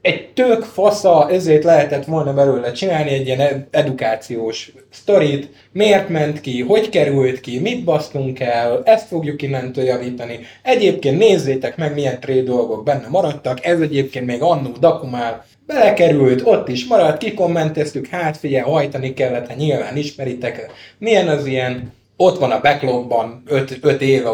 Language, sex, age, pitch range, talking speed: Hungarian, male, 20-39, 120-160 Hz, 145 wpm